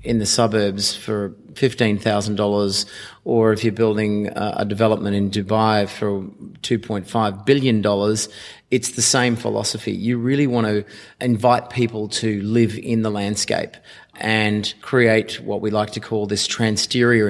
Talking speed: 140 wpm